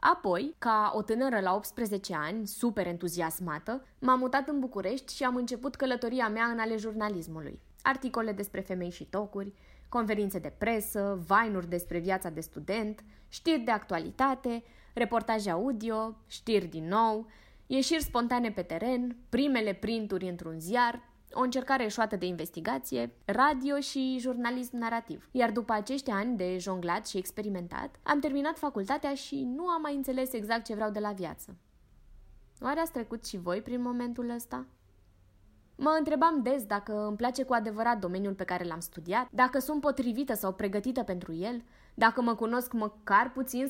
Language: Romanian